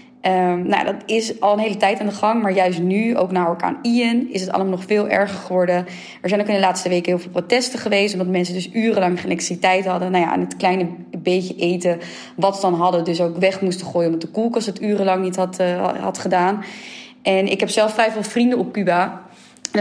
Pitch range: 180-215 Hz